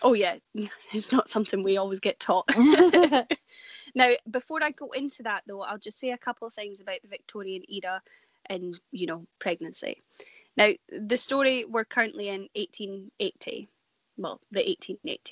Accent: British